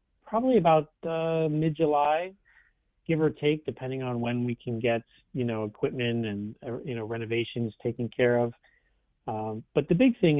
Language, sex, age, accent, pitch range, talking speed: English, male, 40-59, American, 115-140 Hz, 165 wpm